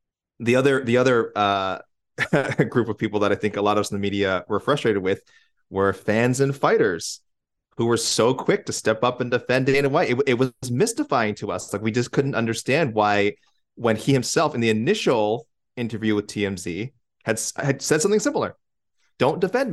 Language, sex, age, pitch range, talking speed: English, male, 30-49, 100-125 Hz, 195 wpm